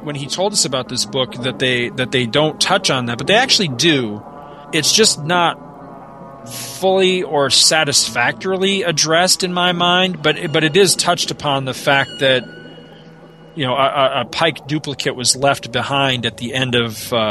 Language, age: English, 40-59